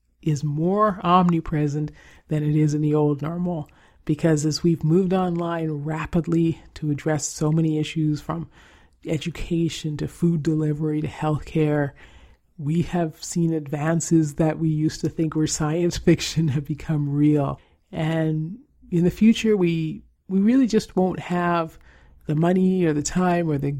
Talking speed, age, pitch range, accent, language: 150 wpm, 40-59, 150-175 Hz, American, English